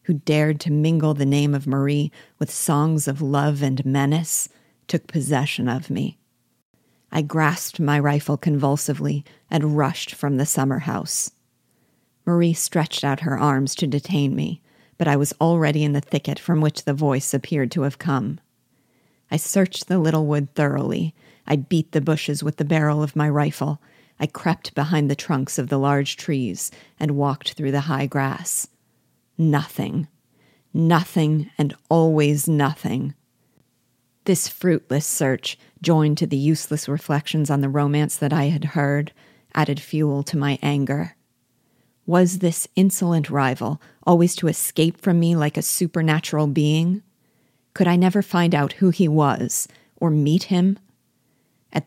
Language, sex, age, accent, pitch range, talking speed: English, female, 40-59, American, 140-165 Hz, 155 wpm